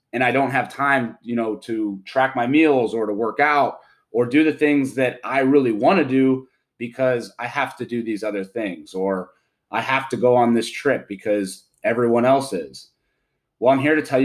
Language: English